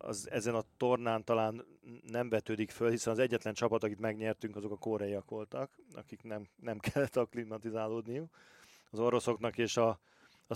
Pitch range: 110-120 Hz